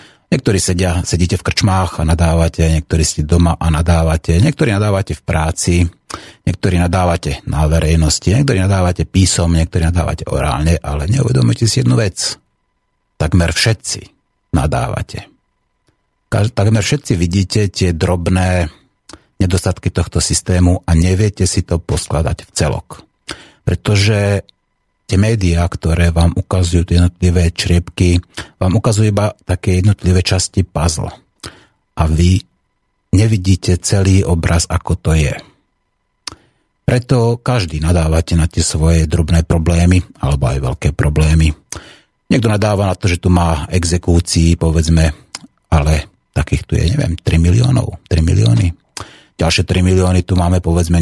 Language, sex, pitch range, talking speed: Slovak, male, 85-95 Hz, 125 wpm